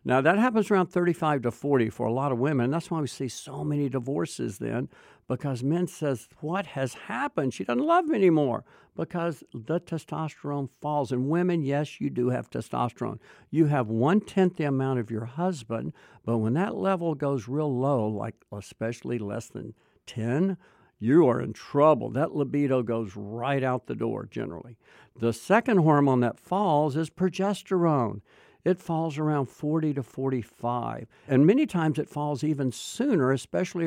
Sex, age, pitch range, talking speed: male, 60-79, 125-165 Hz, 170 wpm